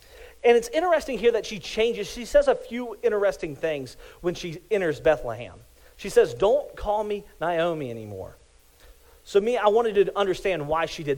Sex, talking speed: male, 175 wpm